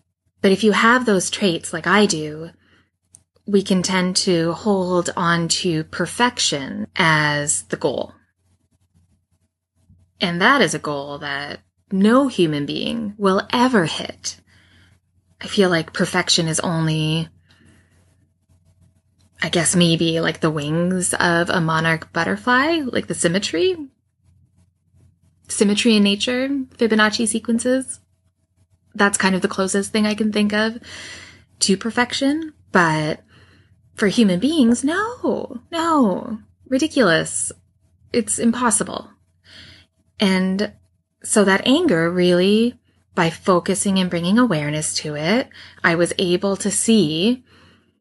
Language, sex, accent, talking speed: English, female, American, 115 wpm